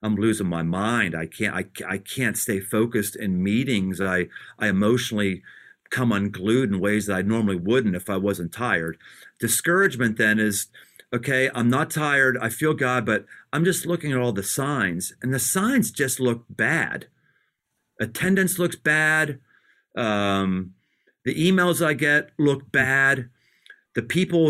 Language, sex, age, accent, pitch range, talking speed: English, male, 40-59, American, 105-145 Hz, 155 wpm